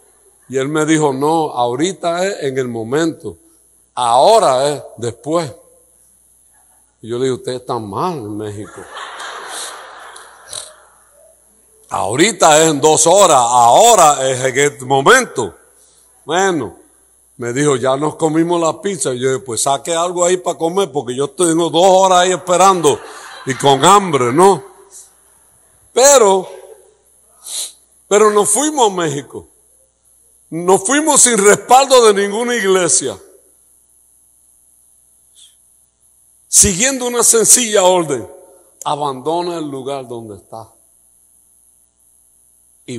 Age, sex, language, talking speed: 60-79, male, English, 115 wpm